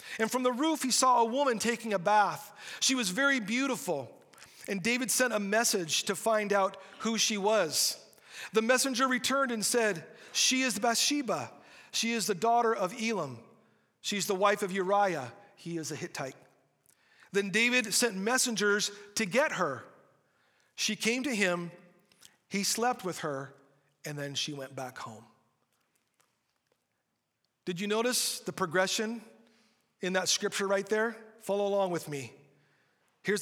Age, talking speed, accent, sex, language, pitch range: 40-59, 155 wpm, American, male, English, 165-225 Hz